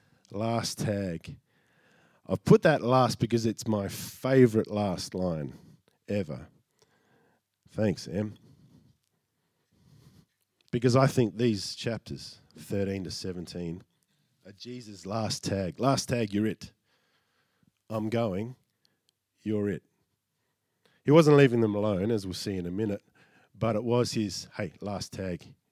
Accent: Australian